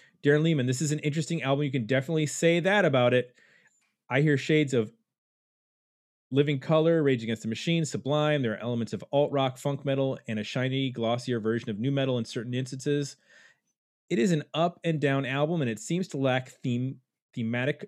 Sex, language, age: male, English, 30-49